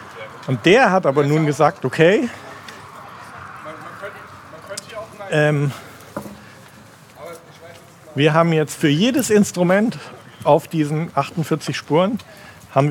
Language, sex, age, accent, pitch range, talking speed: German, male, 50-69, German, 150-205 Hz, 90 wpm